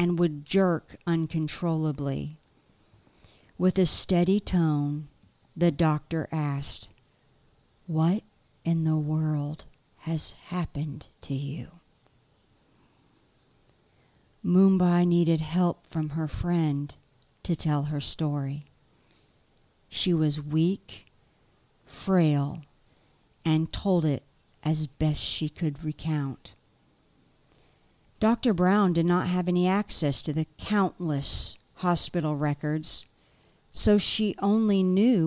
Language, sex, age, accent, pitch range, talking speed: English, female, 50-69, American, 145-180 Hz, 95 wpm